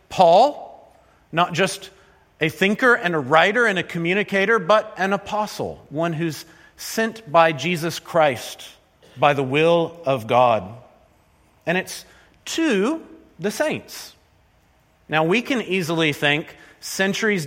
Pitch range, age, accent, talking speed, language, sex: 145-195 Hz, 40-59, American, 125 wpm, English, male